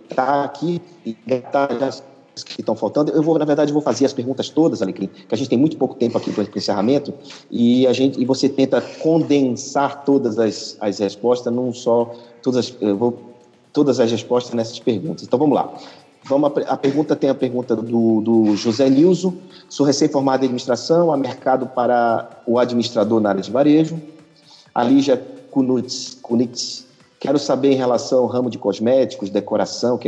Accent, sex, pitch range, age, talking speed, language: Brazilian, male, 105-135 Hz, 40-59, 180 wpm, Portuguese